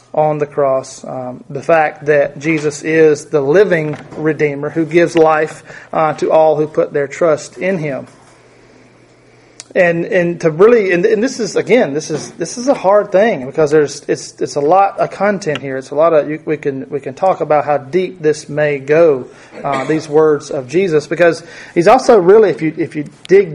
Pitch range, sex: 145-175 Hz, male